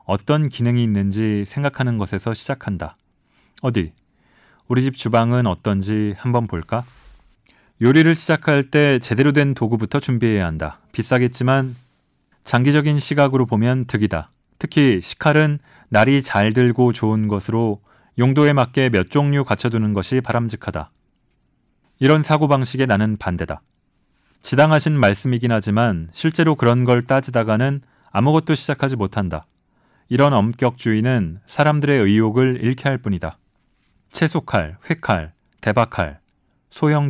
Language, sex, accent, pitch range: Korean, male, native, 105-140 Hz